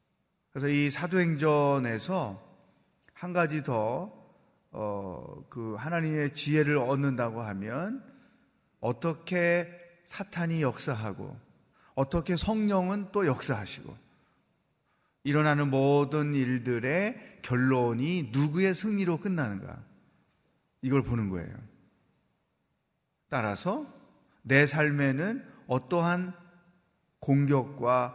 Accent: native